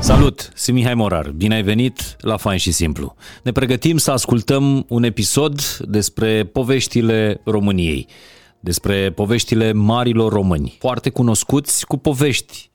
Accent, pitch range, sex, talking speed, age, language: native, 90-110 Hz, male, 130 wpm, 30-49, Romanian